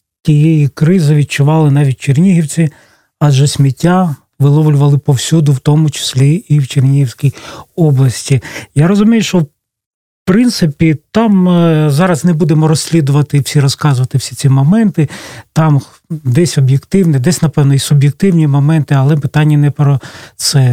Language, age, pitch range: Russian, 40-59, 130-160 Hz